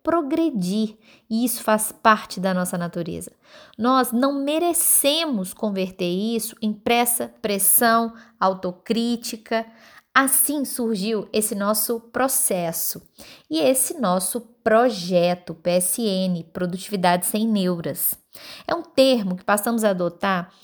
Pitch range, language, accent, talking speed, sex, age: 190-260 Hz, Portuguese, Brazilian, 110 wpm, female, 20-39